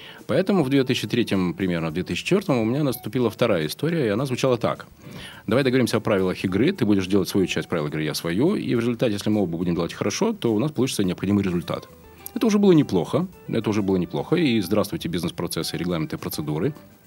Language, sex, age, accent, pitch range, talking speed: Russian, male, 30-49, native, 95-130 Hz, 200 wpm